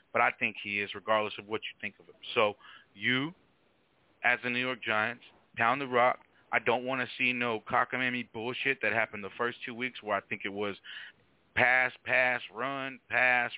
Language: English